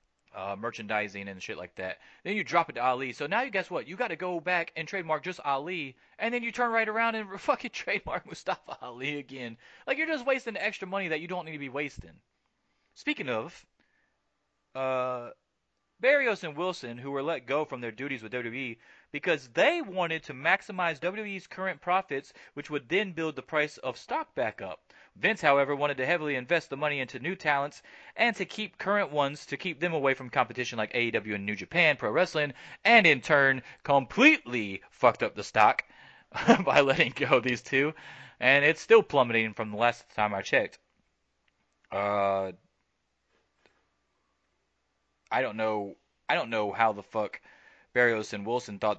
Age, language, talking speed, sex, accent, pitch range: 30-49, English, 185 wpm, male, American, 110-180 Hz